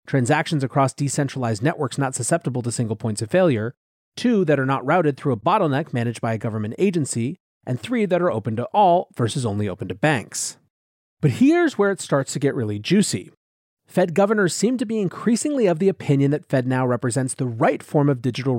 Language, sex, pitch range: English, male, 125-180 Hz